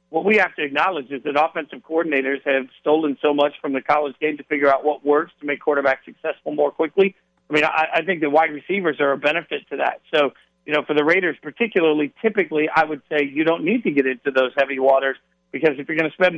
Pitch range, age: 145-165 Hz, 50-69